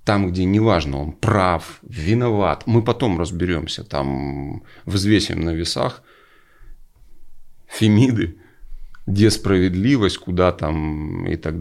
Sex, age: male, 30-49